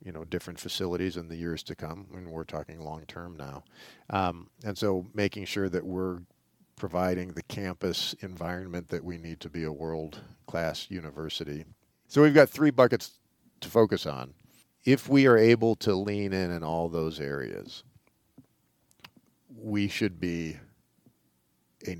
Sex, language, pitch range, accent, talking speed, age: male, English, 80-95 Hz, American, 155 wpm, 50-69